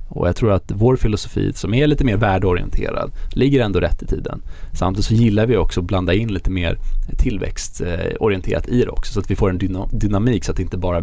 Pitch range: 90-110 Hz